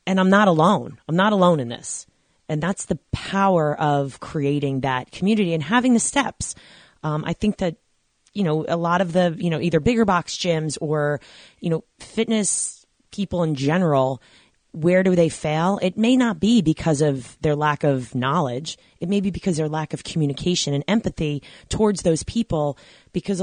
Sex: female